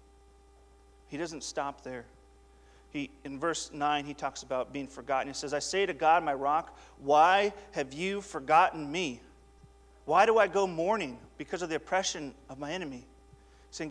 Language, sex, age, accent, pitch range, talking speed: English, male, 40-59, American, 130-170 Hz, 170 wpm